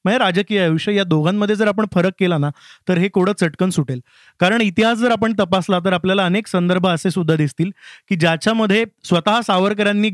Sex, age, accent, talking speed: male, 20-39, native, 185 wpm